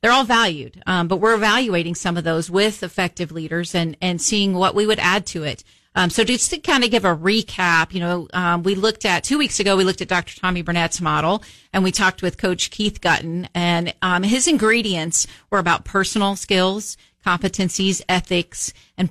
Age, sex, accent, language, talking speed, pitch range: 40-59, female, American, English, 205 wpm, 170-205 Hz